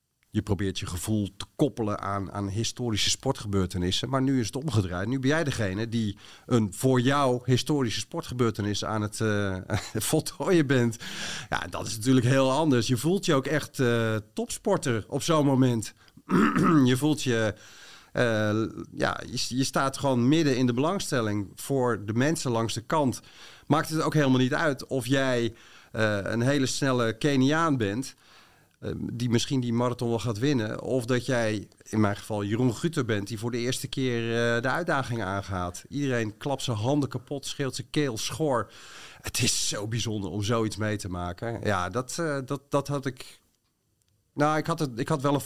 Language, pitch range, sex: Dutch, 100-135 Hz, male